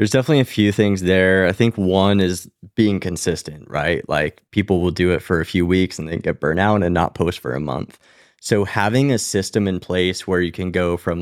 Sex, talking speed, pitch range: male, 235 wpm, 90-105 Hz